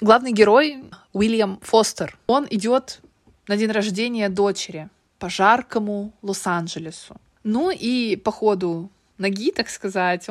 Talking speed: 115 wpm